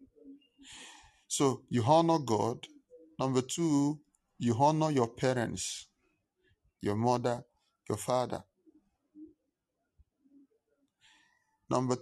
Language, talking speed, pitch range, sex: English, 75 wpm, 110-150 Hz, male